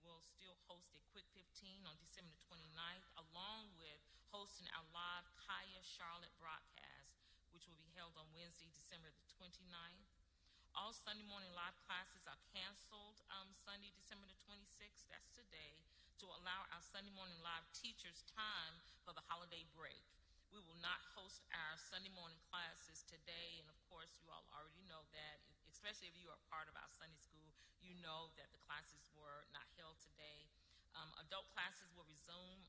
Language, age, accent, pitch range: English, 40-59, American, 160-195 Hz